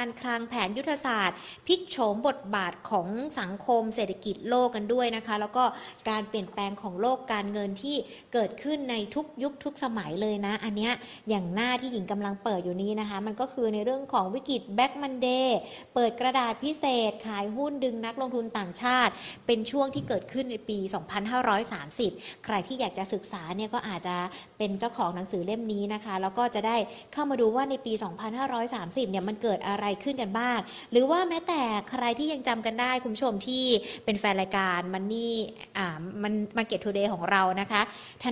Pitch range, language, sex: 205-245 Hz, Thai, female